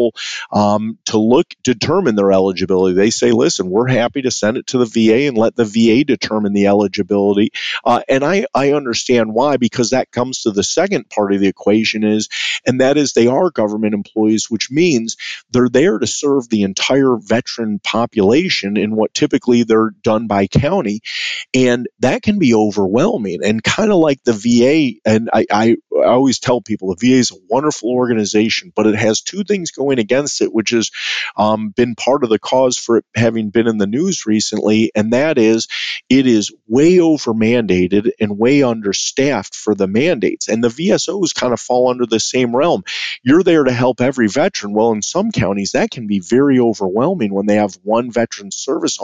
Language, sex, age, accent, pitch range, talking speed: English, male, 40-59, American, 105-125 Hz, 195 wpm